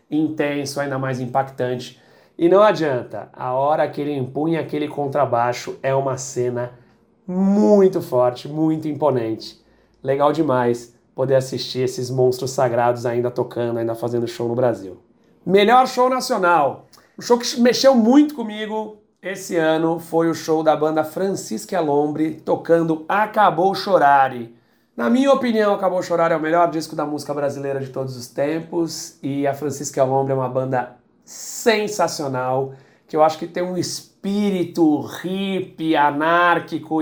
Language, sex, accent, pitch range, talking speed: Portuguese, male, Brazilian, 135-175 Hz, 145 wpm